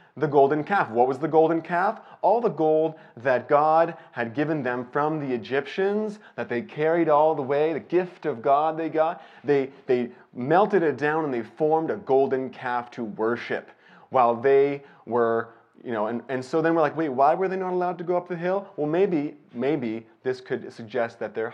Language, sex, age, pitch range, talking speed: English, male, 30-49, 125-170 Hz, 205 wpm